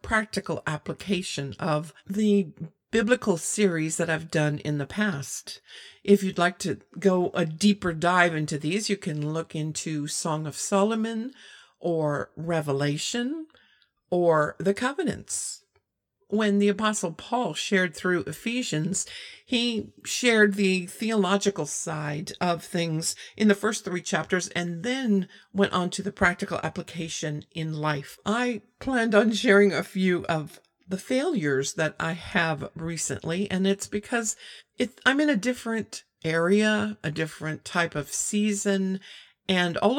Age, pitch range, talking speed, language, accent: 50-69, 160-205 Hz, 135 wpm, English, American